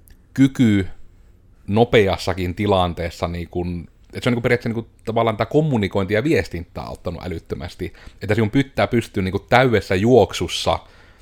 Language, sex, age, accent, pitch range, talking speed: Finnish, male, 30-49, native, 90-110 Hz, 140 wpm